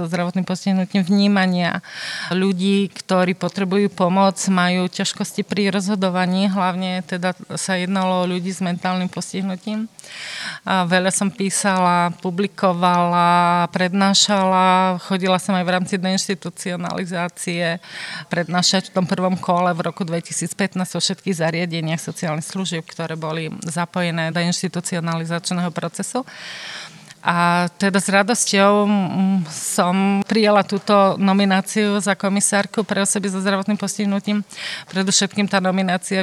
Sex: female